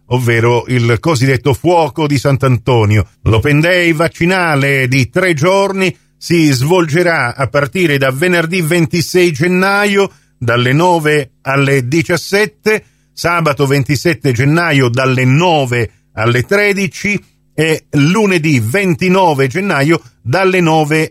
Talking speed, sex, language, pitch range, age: 105 wpm, male, Italian, 135-180 Hz, 50-69